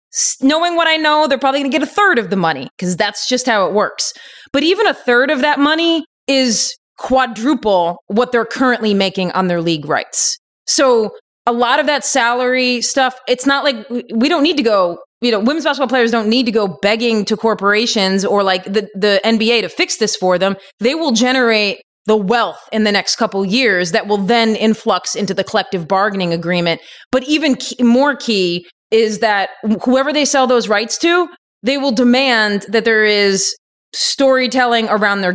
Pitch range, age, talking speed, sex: 200-265 Hz, 30-49, 195 wpm, female